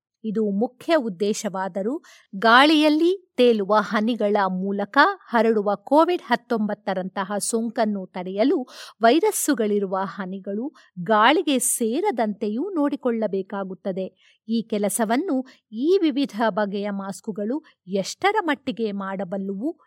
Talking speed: 80 wpm